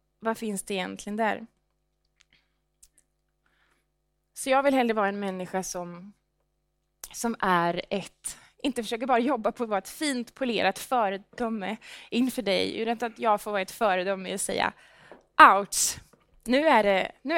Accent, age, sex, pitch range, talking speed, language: Norwegian, 20-39, female, 190-240 Hz, 150 wpm, Swedish